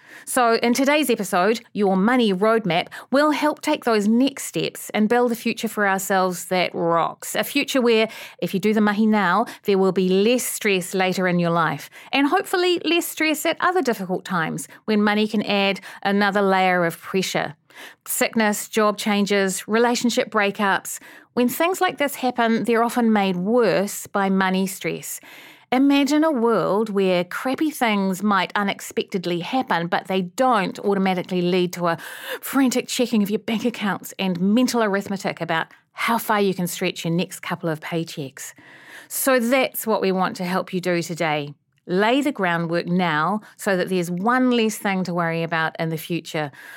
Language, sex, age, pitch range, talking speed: English, female, 40-59, 180-235 Hz, 170 wpm